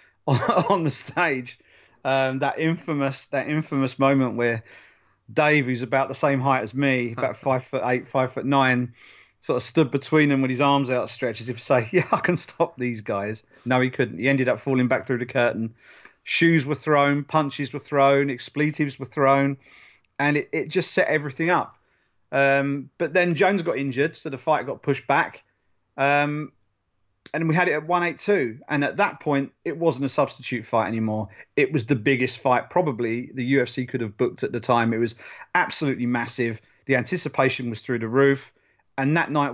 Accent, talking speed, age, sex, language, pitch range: British, 195 wpm, 40-59, male, English, 120-145 Hz